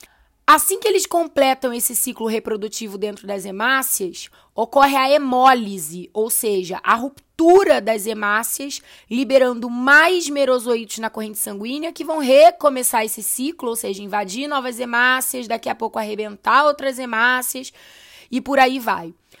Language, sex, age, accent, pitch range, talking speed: Portuguese, female, 20-39, Brazilian, 225-285 Hz, 140 wpm